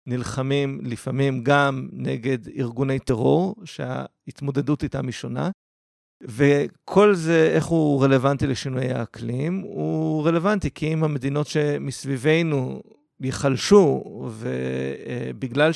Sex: male